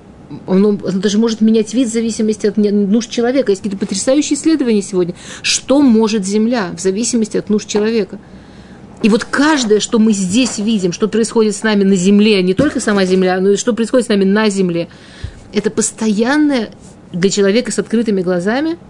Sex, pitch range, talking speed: female, 190-230 Hz, 175 wpm